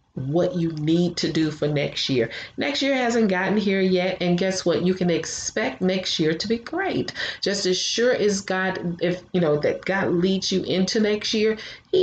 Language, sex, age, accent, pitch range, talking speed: English, female, 30-49, American, 165-220 Hz, 205 wpm